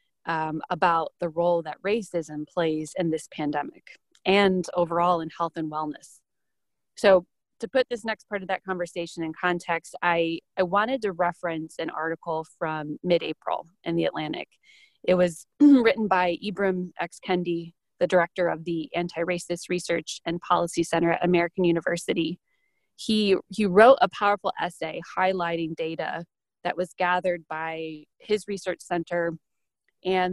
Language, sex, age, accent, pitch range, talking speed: English, female, 20-39, American, 165-185 Hz, 145 wpm